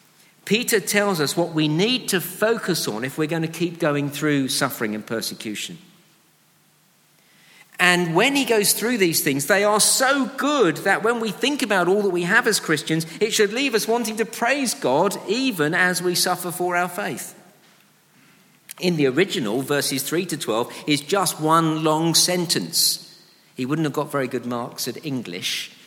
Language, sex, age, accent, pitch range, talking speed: English, male, 50-69, British, 155-205 Hz, 175 wpm